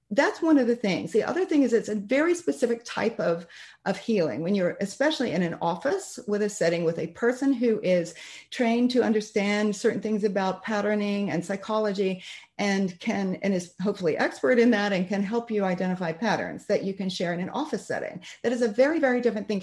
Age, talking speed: 40-59, 210 wpm